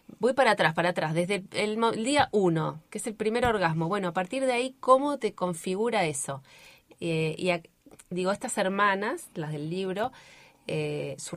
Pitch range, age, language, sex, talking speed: 160-205 Hz, 20-39, Spanish, female, 190 wpm